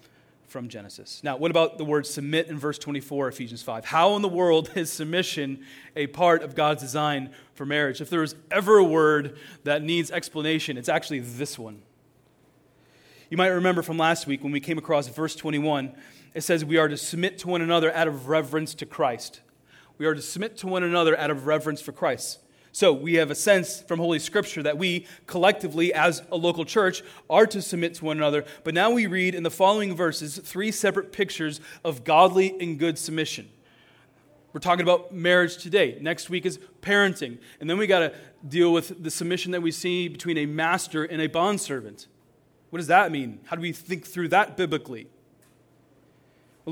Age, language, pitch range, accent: 30-49, English, 150-180 Hz, American